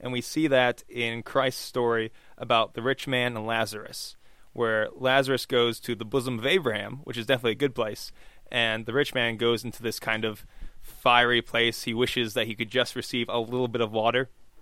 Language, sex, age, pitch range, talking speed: English, male, 20-39, 115-135 Hz, 205 wpm